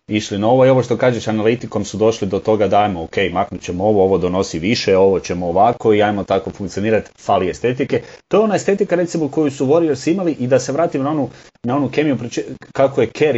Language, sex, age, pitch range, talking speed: Croatian, male, 30-49, 105-120 Hz, 230 wpm